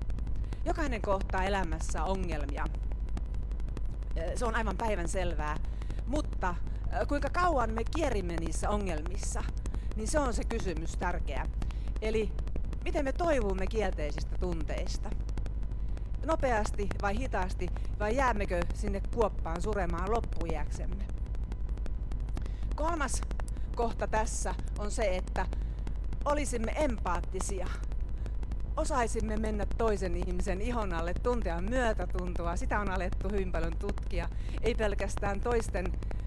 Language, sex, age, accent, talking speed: Finnish, female, 40-59, native, 105 wpm